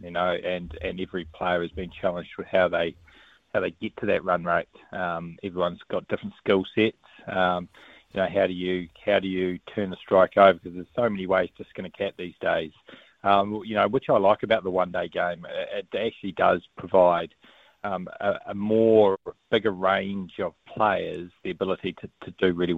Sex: male